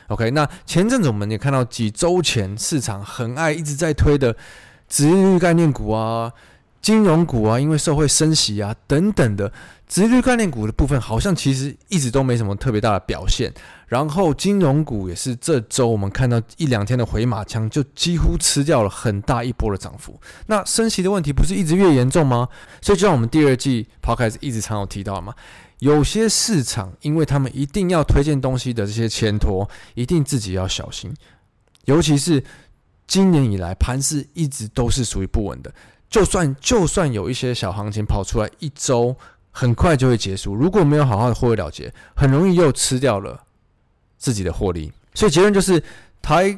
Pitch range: 110-155 Hz